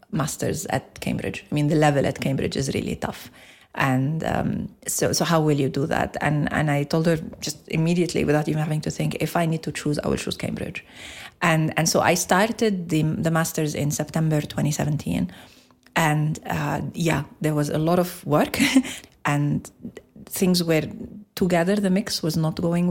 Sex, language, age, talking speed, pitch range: female, English, 30-49, 185 wpm, 145-170 Hz